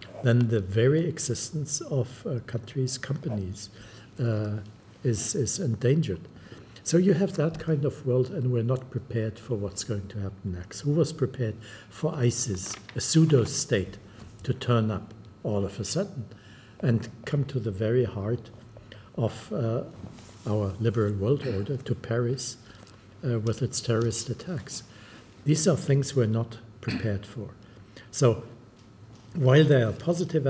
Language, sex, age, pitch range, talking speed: English, male, 60-79, 110-130 Hz, 145 wpm